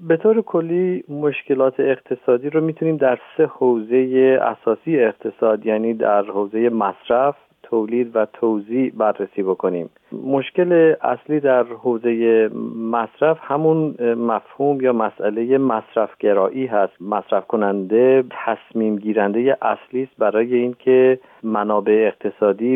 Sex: male